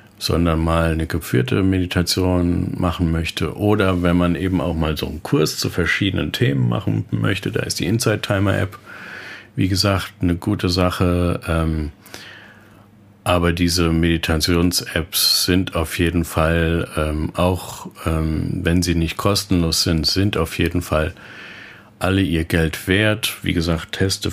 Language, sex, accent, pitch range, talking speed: German, male, German, 85-100 Hz, 135 wpm